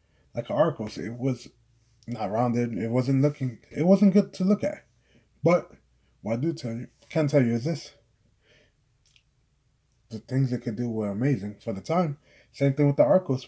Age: 20-39